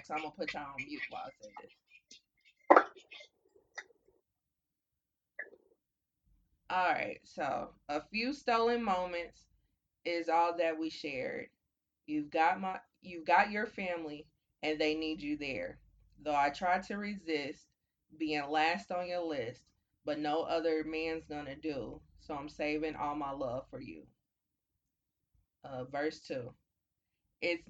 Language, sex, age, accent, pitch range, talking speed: English, female, 20-39, American, 145-175 Hz, 135 wpm